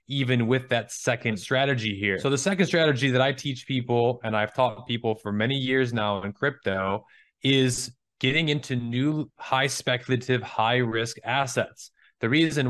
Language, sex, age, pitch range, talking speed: English, male, 20-39, 120-155 Hz, 165 wpm